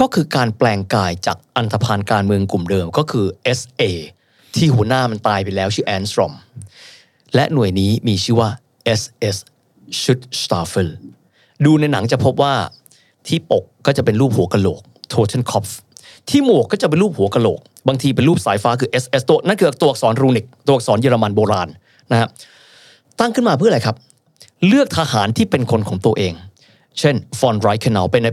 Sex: male